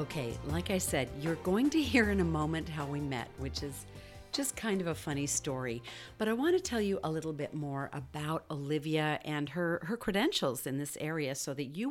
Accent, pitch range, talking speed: American, 150-210 Hz, 220 wpm